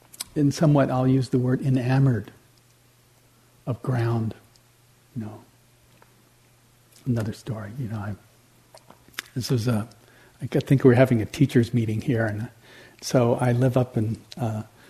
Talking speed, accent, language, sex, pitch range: 145 wpm, American, English, male, 115-135 Hz